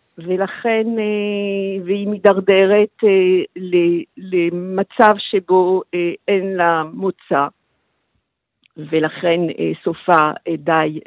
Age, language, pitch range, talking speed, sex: 50-69, Hebrew, 180-220 Hz, 60 wpm, female